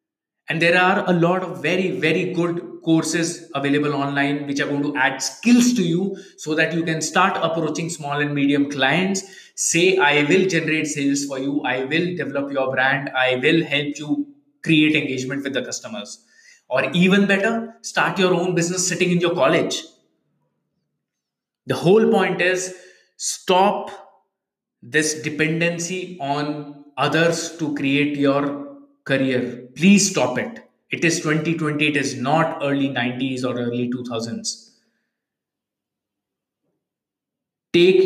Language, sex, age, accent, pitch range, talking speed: English, male, 20-39, Indian, 140-185 Hz, 140 wpm